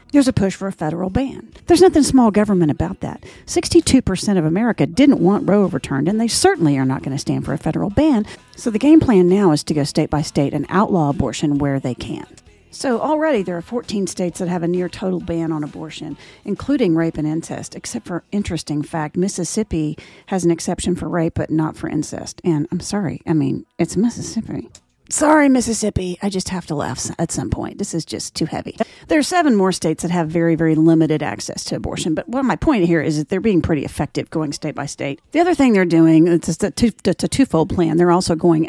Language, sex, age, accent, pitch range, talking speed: English, female, 40-59, American, 160-225 Hz, 225 wpm